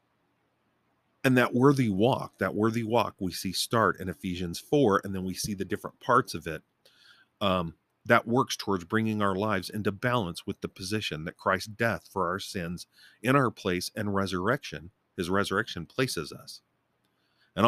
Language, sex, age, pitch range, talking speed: English, male, 40-59, 90-115 Hz, 170 wpm